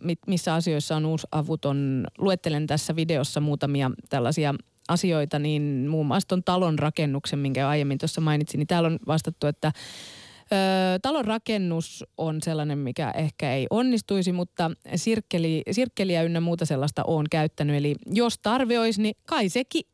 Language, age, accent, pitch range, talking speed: Finnish, 30-49, native, 150-190 Hz, 140 wpm